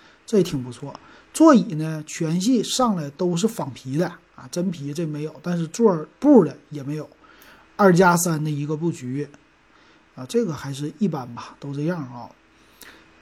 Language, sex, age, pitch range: Chinese, male, 30-49, 155-210 Hz